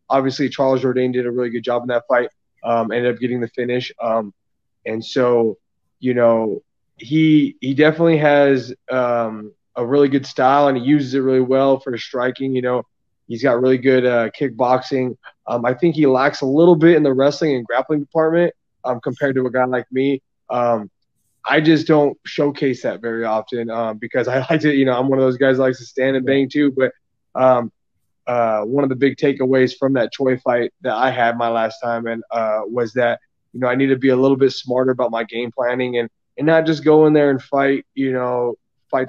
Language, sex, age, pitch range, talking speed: English, male, 20-39, 120-140 Hz, 220 wpm